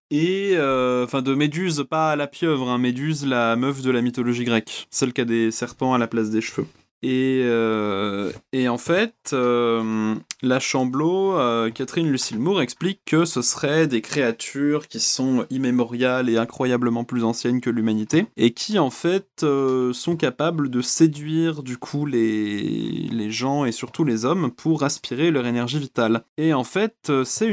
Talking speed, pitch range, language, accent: 175 wpm, 120-150 Hz, French, French